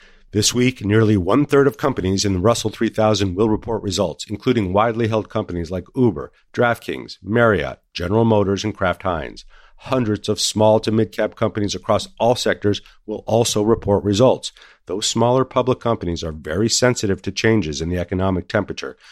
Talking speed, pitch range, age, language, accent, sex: 165 wpm, 95-115 Hz, 50-69, English, American, male